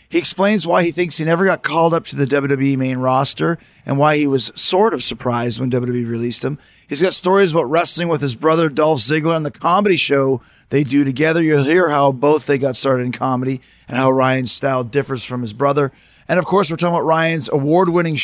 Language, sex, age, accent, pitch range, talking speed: English, male, 30-49, American, 130-165 Hz, 225 wpm